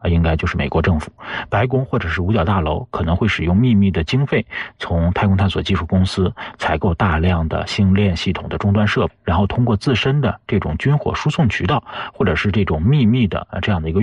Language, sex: Chinese, male